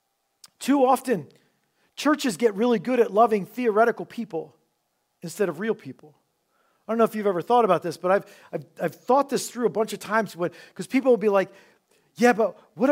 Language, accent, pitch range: English, American, 195-255 Hz